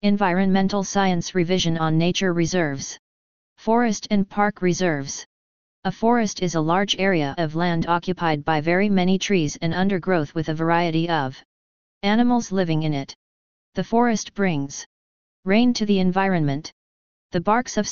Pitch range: 145-195 Hz